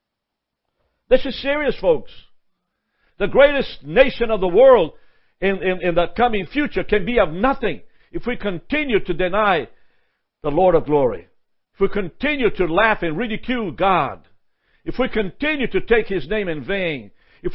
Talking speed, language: 160 wpm, English